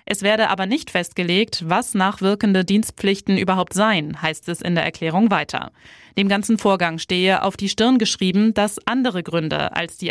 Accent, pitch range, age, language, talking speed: German, 180-220 Hz, 20-39, German, 170 wpm